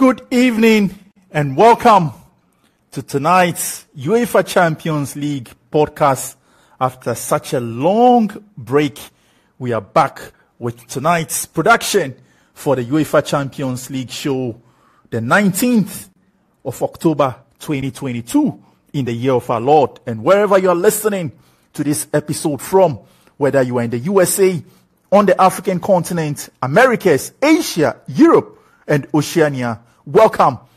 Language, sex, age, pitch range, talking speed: English, male, 50-69, 130-185 Hz, 125 wpm